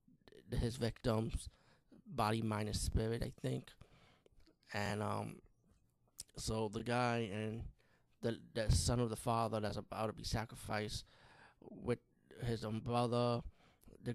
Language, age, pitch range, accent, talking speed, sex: English, 20-39, 105-125 Hz, American, 125 wpm, male